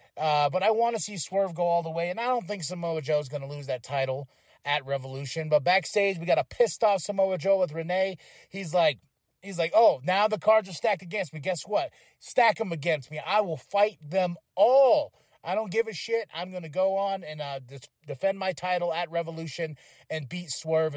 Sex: male